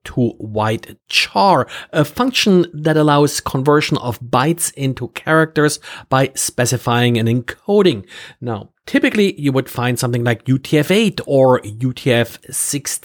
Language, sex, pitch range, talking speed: English, male, 125-170 Hz, 120 wpm